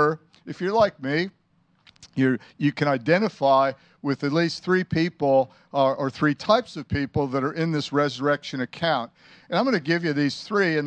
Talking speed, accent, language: 190 wpm, American, English